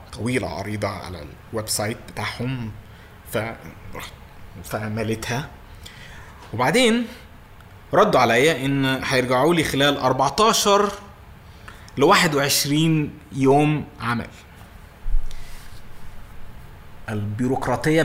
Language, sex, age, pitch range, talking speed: Arabic, male, 20-39, 95-125 Hz, 70 wpm